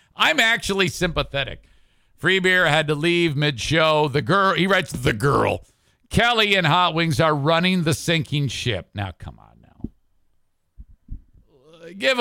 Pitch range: 110-160 Hz